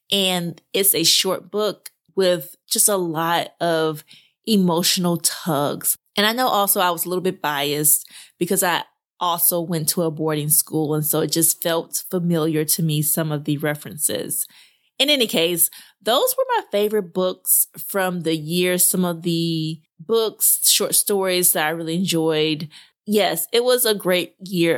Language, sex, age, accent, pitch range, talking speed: English, female, 20-39, American, 160-195 Hz, 165 wpm